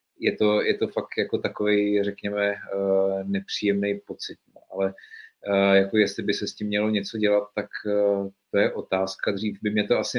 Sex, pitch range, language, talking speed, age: male, 100-105 Hz, Czech, 170 wpm, 30-49